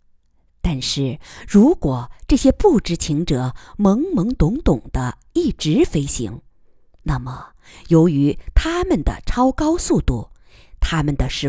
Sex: female